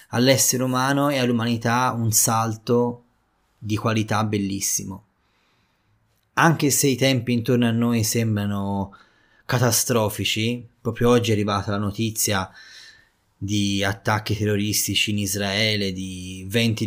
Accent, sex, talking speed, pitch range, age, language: native, male, 110 wpm, 100-120 Hz, 20-39, Italian